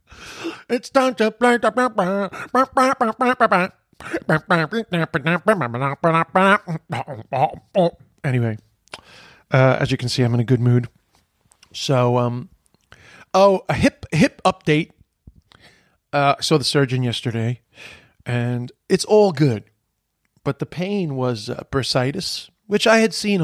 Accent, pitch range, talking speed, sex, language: American, 125-180 Hz, 105 wpm, male, English